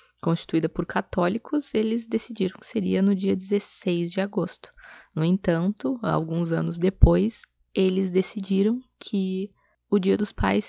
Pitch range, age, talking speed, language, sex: 175-210 Hz, 20-39, 135 wpm, Portuguese, female